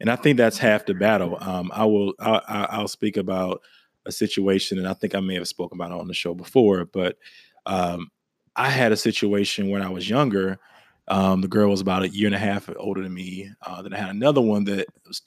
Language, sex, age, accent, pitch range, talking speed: English, male, 20-39, American, 100-120 Hz, 235 wpm